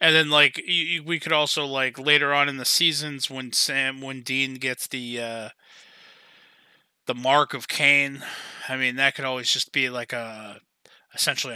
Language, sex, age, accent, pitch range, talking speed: English, male, 20-39, American, 125-170 Hz, 170 wpm